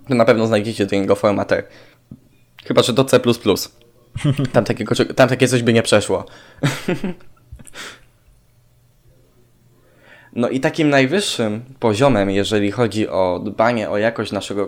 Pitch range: 105-125 Hz